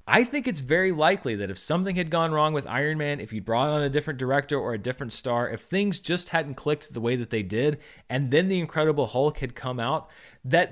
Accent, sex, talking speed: American, male, 245 wpm